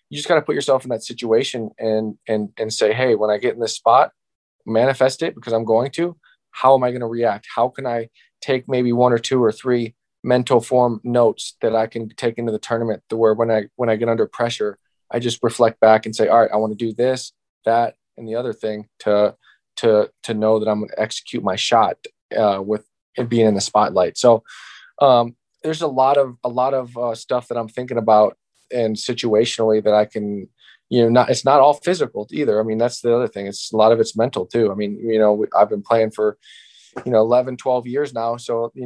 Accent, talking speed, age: American, 235 wpm, 20-39